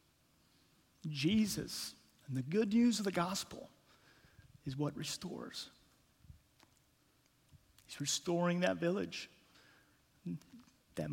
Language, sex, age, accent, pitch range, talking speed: English, male, 40-59, American, 130-170 Hz, 85 wpm